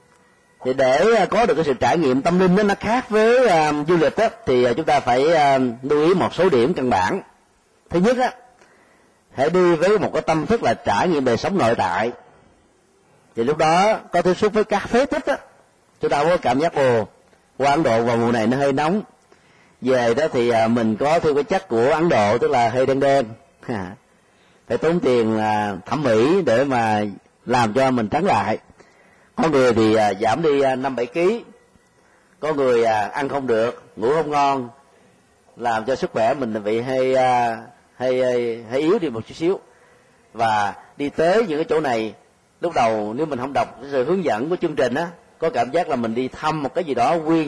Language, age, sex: Vietnamese, 30-49, male